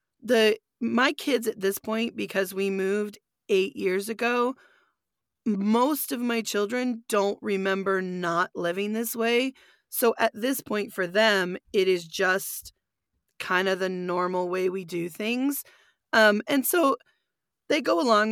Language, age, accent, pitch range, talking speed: English, 20-39, American, 185-220 Hz, 145 wpm